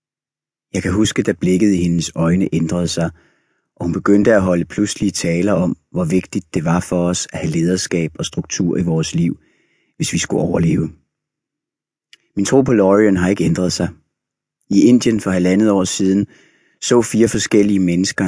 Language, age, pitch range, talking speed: Danish, 30-49, 85-100 Hz, 175 wpm